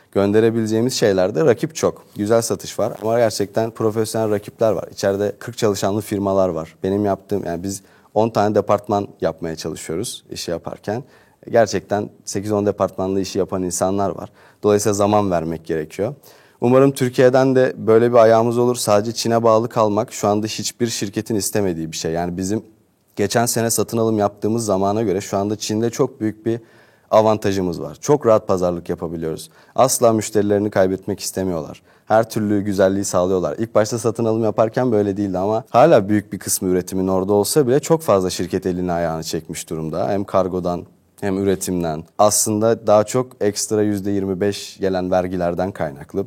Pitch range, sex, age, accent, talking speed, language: 95-110 Hz, male, 30-49, native, 160 wpm, Turkish